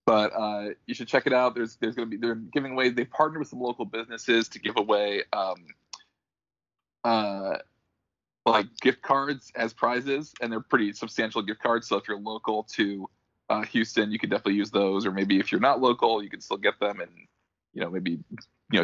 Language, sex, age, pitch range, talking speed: English, male, 20-39, 105-125 Hz, 205 wpm